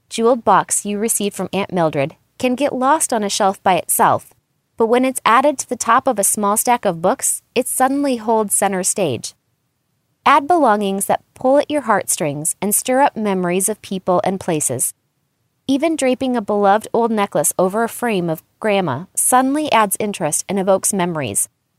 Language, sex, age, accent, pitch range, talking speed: English, female, 20-39, American, 175-250 Hz, 180 wpm